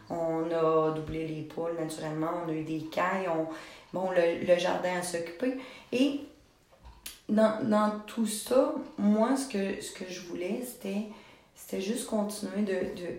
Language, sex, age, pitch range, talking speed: French, female, 30-49, 165-200 Hz, 165 wpm